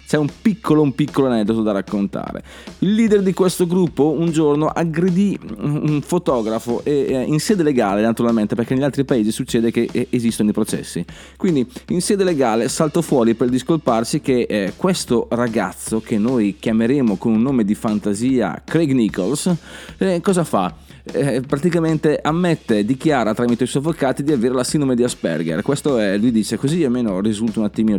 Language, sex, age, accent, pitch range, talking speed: Italian, male, 30-49, native, 115-160 Hz, 170 wpm